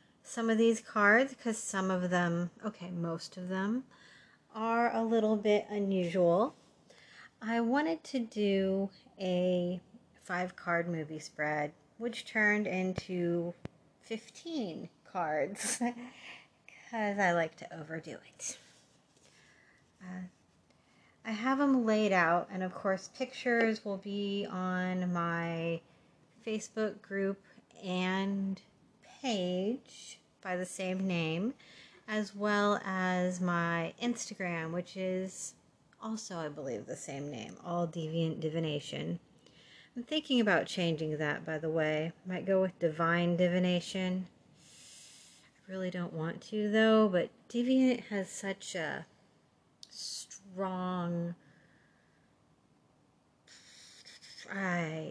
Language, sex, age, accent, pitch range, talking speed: English, female, 30-49, American, 175-215 Hz, 110 wpm